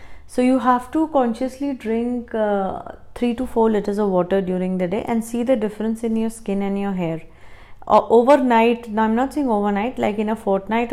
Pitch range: 200-250 Hz